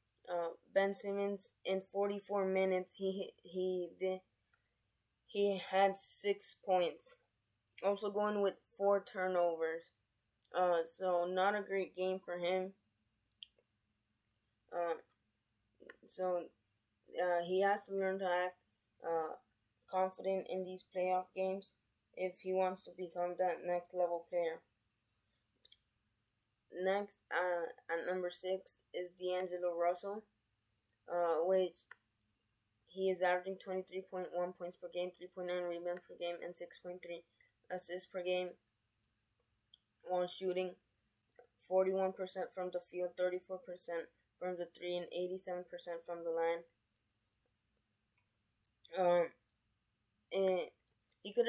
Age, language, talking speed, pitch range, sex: 20-39, English, 110 wpm, 120-190 Hz, female